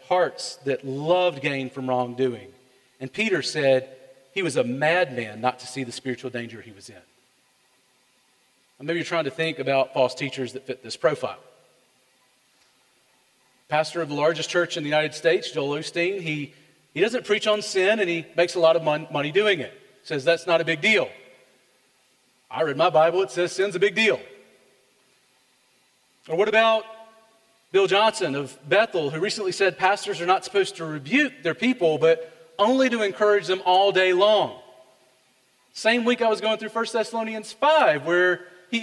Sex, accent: male, American